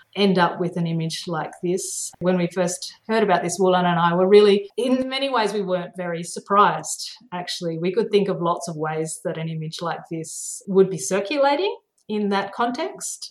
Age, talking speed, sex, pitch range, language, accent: 30-49, 200 wpm, female, 170-205 Hz, English, Australian